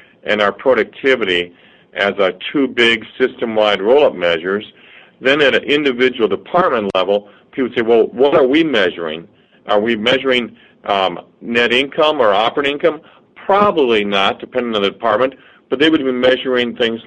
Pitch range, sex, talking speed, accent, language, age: 105-130 Hz, male, 155 wpm, American, English, 50-69